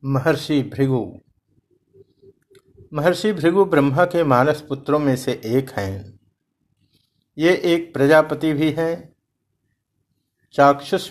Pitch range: 125-160 Hz